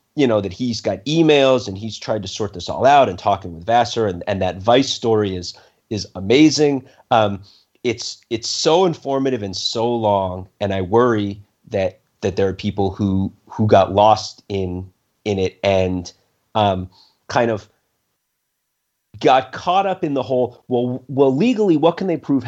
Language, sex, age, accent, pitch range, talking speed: English, male, 30-49, American, 100-130 Hz, 175 wpm